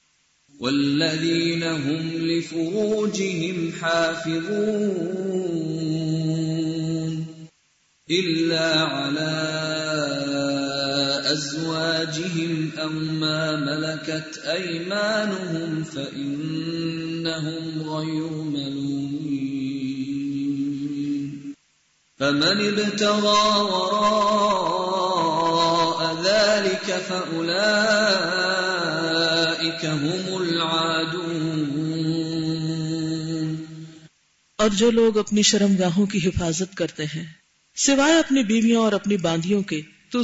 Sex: male